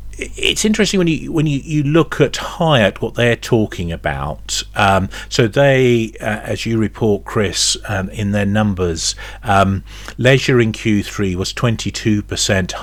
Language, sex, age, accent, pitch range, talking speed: English, male, 40-59, British, 90-115 Hz, 150 wpm